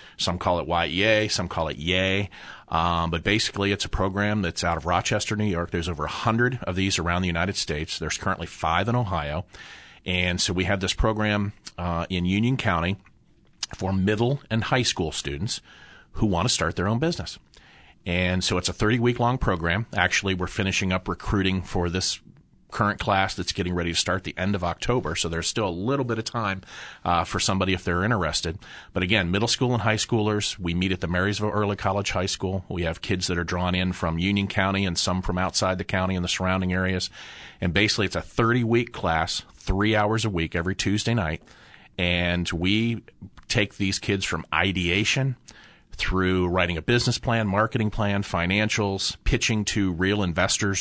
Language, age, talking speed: English, 40-59, 195 wpm